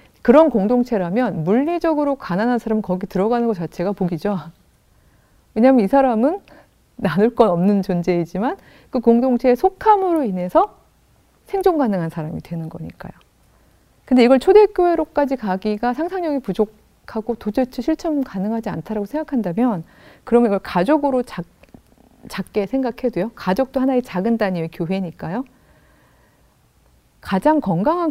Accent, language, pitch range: native, Korean, 190-270 Hz